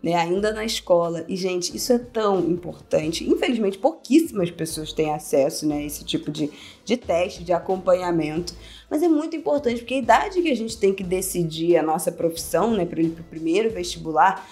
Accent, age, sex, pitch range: Brazilian, 20-39, female, 170-205 Hz